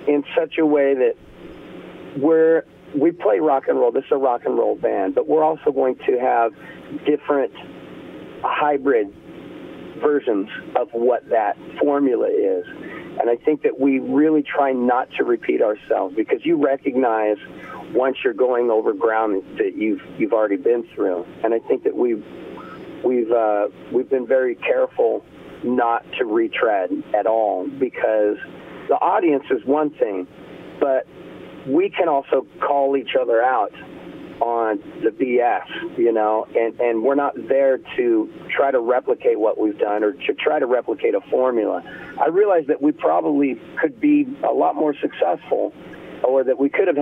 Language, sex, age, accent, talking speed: English, male, 50-69, American, 160 wpm